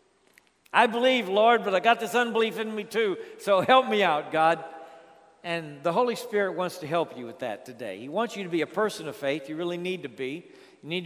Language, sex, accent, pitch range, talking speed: English, male, American, 150-200 Hz, 235 wpm